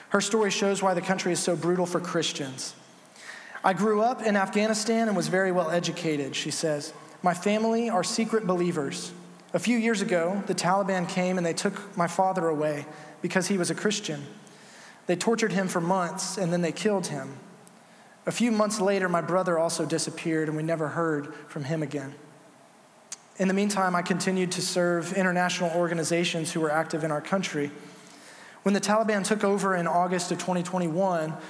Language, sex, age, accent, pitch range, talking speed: English, male, 20-39, American, 165-195 Hz, 180 wpm